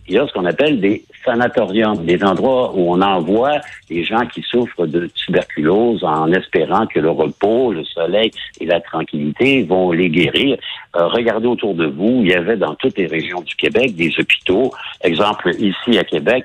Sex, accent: male, French